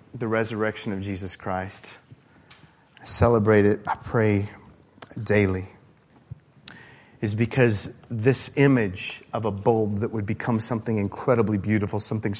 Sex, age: male, 30-49